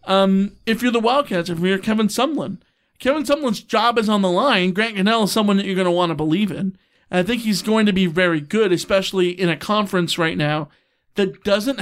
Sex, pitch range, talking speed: male, 180-230 Hz, 230 wpm